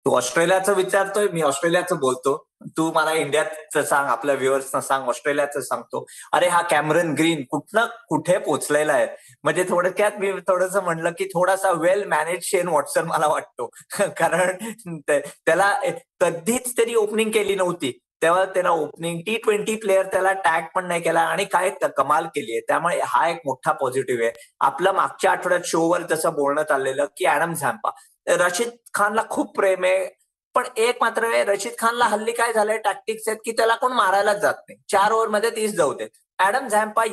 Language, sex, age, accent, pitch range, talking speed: Marathi, male, 20-39, native, 165-220 Hz, 175 wpm